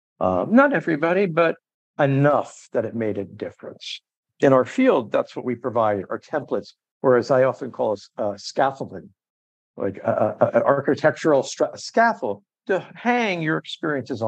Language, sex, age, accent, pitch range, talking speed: English, male, 60-79, American, 120-150 Hz, 145 wpm